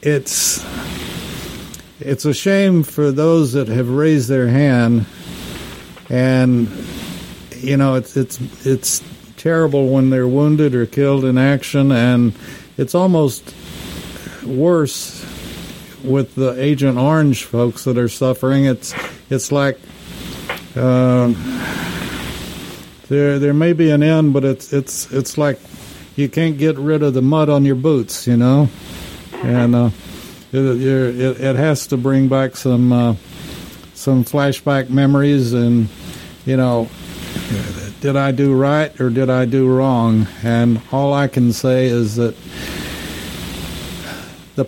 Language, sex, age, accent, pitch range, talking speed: English, male, 60-79, American, 120-140 Hz, 130 wpm